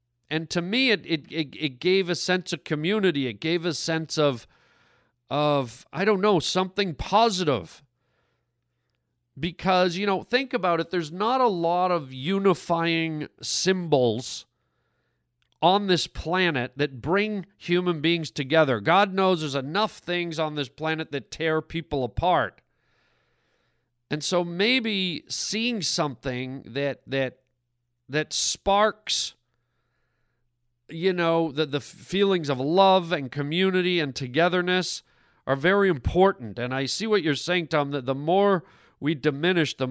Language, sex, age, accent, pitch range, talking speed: English, male, 40-59, American, 135-180 Hz, 135 wpm